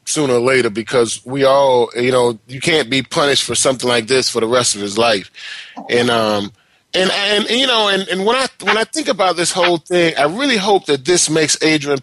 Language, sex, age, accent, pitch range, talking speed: English, male, 30-49, American, 140-210 Hz, 230 wpm